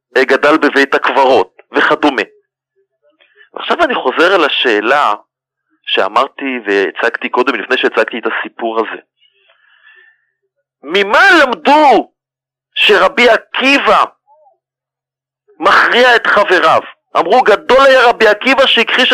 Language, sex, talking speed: Hebrew, male, 95 wpm